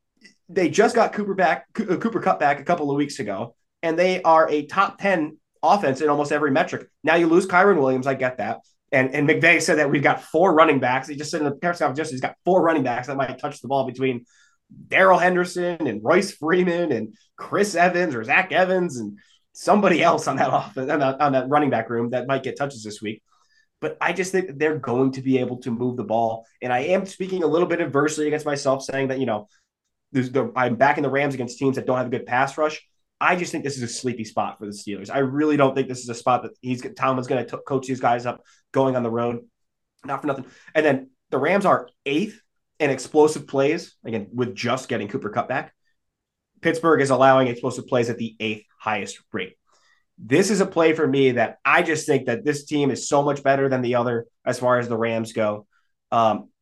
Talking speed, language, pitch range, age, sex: 230 wpm, English, 125-160 Hz, 20-39, male